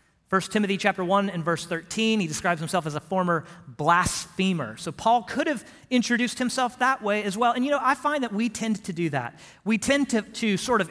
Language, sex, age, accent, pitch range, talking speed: English, male, 40-59, American, 155-210 Hz, 225 wpm